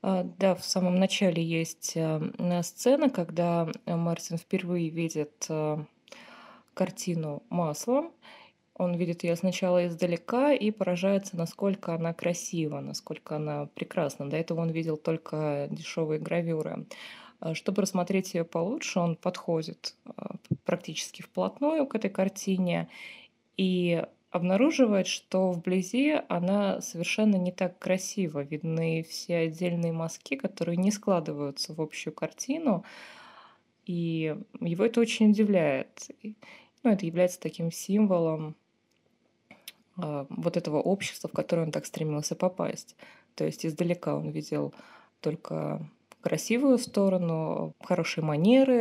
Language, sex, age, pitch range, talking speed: Russian, female, 20-39, 165-200 Hz, 115 wpm